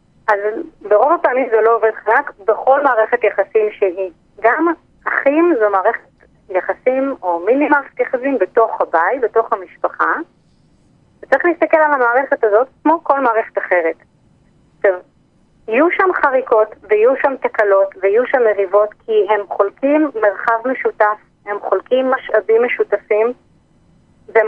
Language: Hebrew